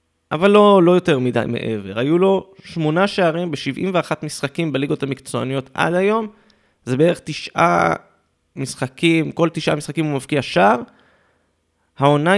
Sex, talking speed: male, 130 wpm